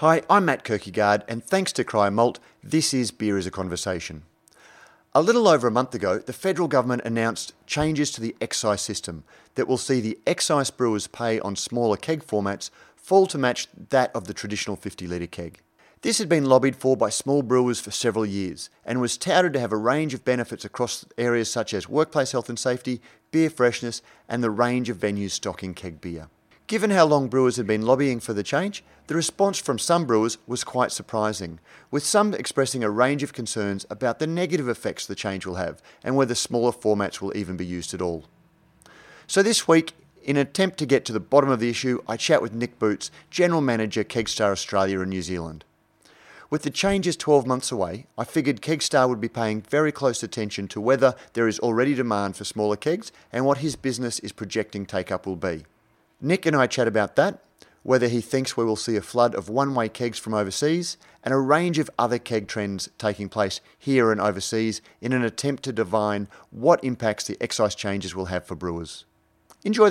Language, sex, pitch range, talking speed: English, male, 105-135 Hz, 205 wpm